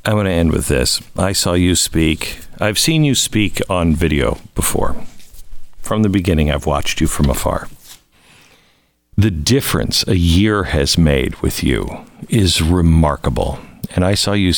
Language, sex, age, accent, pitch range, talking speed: English, male, 50-69, American, 70-95 Hz, 160 wpm